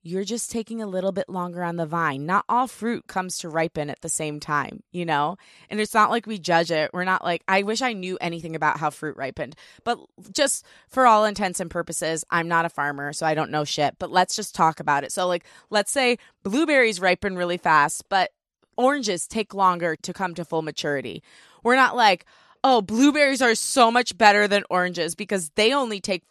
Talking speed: 215 wpm